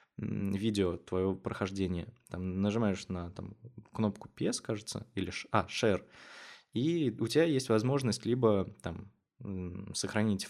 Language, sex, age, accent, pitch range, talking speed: Russian, male, 20-39, native, 95-115 Hz, 125 wpm